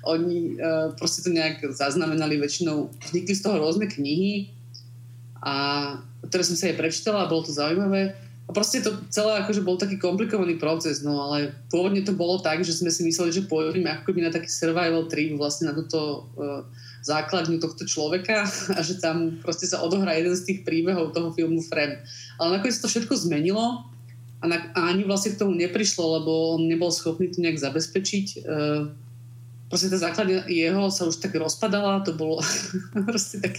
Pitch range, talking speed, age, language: 145-180 Hz, 175 wpm, 30-49, Slovak